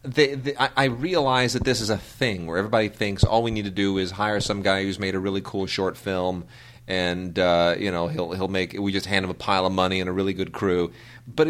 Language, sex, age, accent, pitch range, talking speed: English, male, 30-49, American, 95-130 Hz, 260 wpm